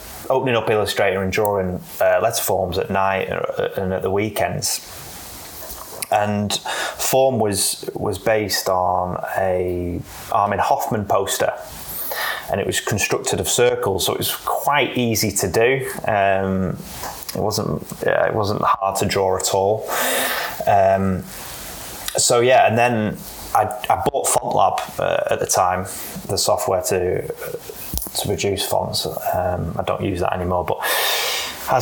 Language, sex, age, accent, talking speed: English, male, 20-39, British, 140 wpm